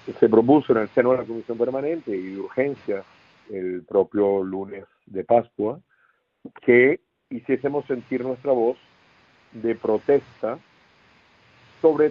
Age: 50-69